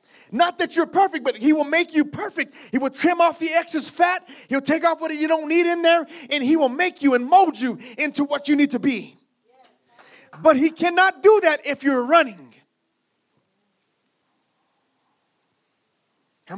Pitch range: 230-290 Hz